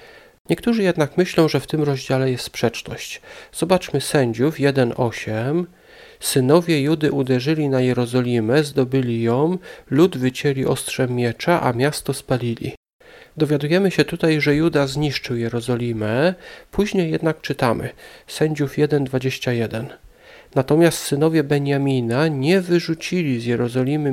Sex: male